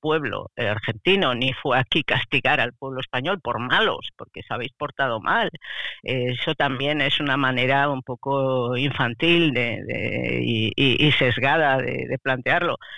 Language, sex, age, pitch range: Spanish, female, 50-69, 130-165 Hz